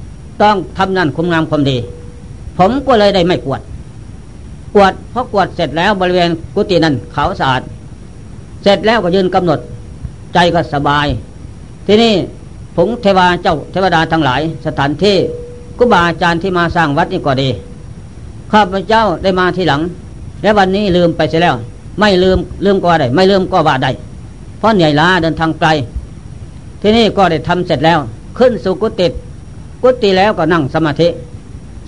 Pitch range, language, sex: 145-195 Hz, Thai, female